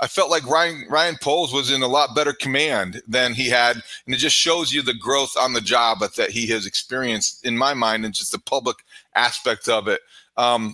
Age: 40-59